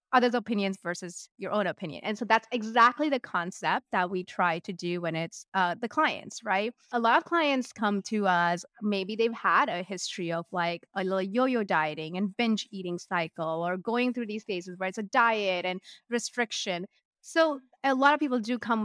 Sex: female